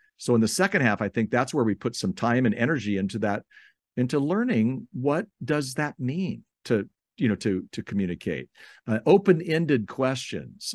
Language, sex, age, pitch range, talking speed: English, male, 50-69, 100-145 Hz, 180 wpm